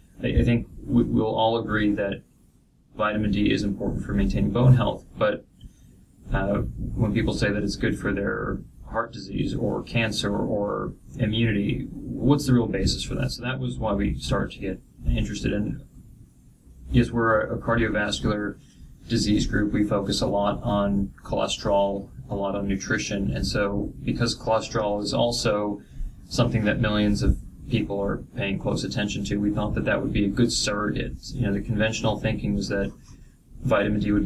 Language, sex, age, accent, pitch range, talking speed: English, male, 20-39, American, 100-115 Hz, 170 wpm